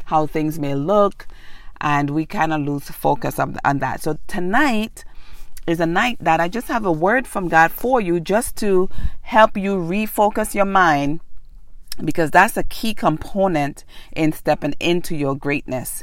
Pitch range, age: 150-190 Hz, 40-59